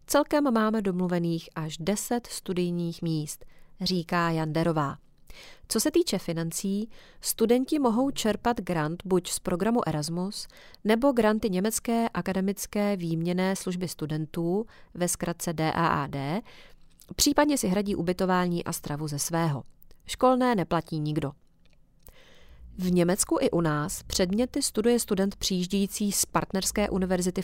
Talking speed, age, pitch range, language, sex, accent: 120 wpm, 30-49, 170-225 Hz, Czech, female, native